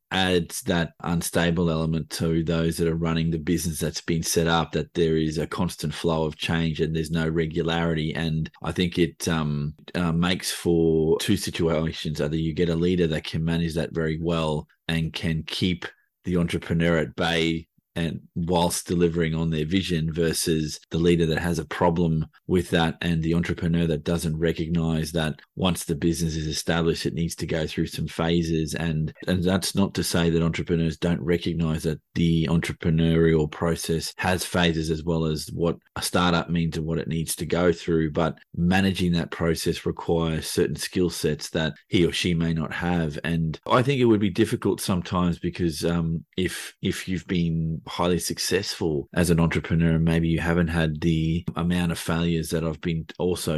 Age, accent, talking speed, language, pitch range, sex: 20-39, Australian, 185 wpm, English, 80-85 Hz, male